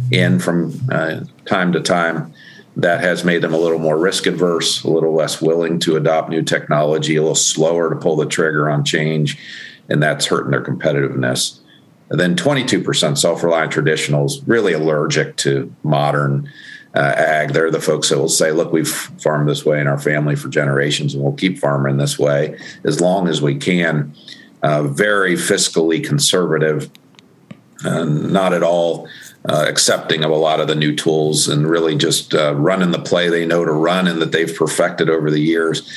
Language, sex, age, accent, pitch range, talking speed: English, male, 50-69, American, 75-85 Hz, 180 wpm